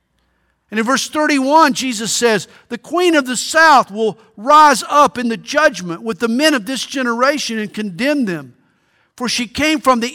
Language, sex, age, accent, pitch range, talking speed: English, male, 50-69, American, 155-235 Hz, 185 wpm